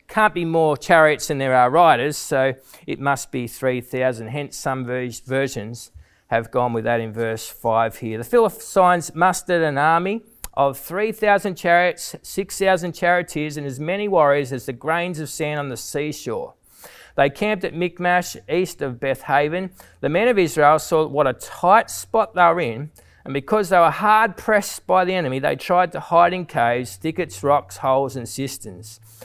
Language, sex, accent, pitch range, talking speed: English, male, Australian, 135-185 Hz, 175 wpm